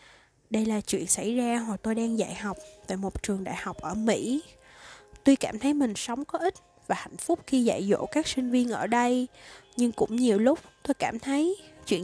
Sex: female